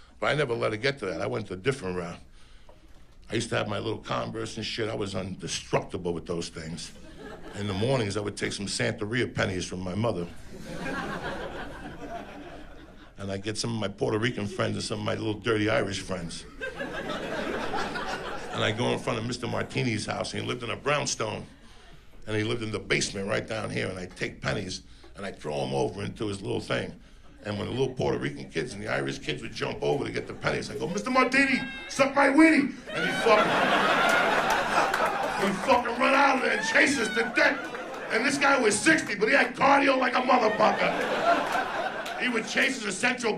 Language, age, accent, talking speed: English, 60-79, American, 210 wpm